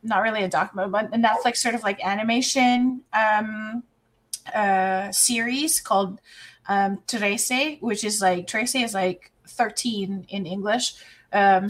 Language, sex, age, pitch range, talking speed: English, female, 20-39, 190-235 Hz, 140 wpm